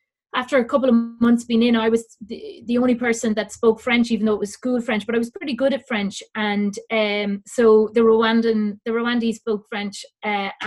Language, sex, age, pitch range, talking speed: English, female, 30-49, 210-245 Hz, 220 wpm